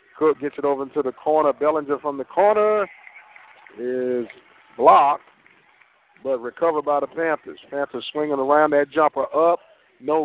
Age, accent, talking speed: 50-69, American, 145 wpm